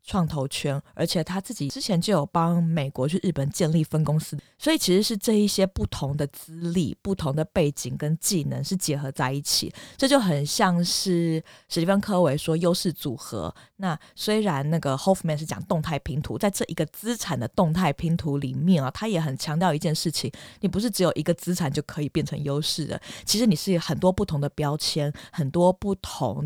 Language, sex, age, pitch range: Chinese, female, 20-39, 145-185 Hz